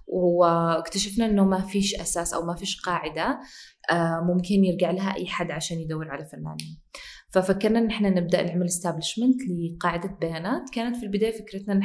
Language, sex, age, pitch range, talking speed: Arabic, female, 20-39, 165-195 Hz, 155 wpm